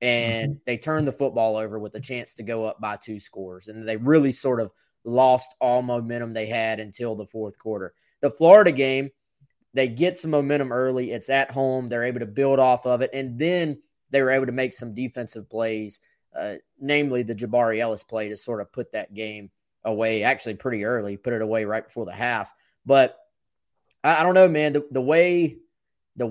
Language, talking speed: English, 205 wpm